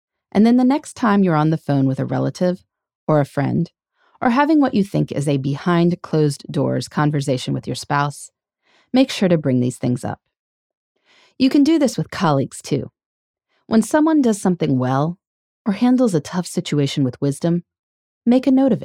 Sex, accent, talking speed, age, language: female, American, 180 wpm, 30-49, English